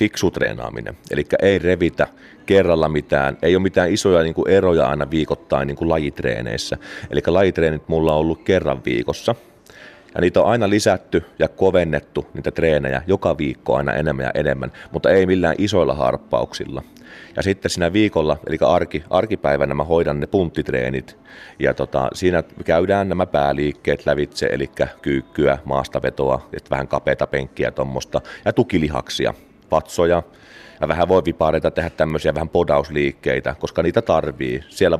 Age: 30-49